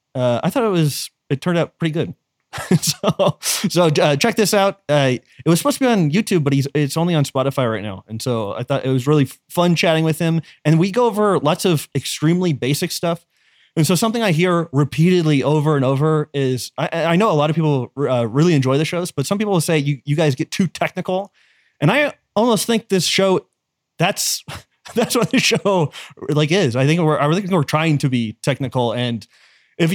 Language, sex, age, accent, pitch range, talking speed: English, male, 30-49, American, 130-175 Hz, 220 wpm